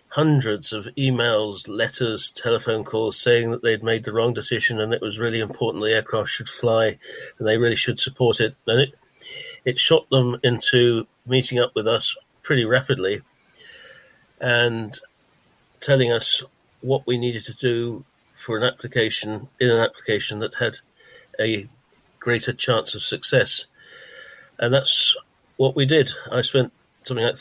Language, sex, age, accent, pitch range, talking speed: English, male, 50-69, British, 115-135 Hz, 155 wpm